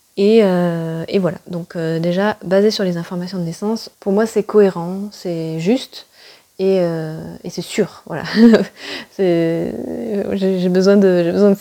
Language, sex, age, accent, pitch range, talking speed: French, female, 20-39, French, 170-210 Hz, 165 wpm